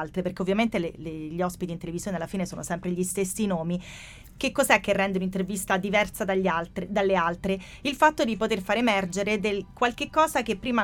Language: Italian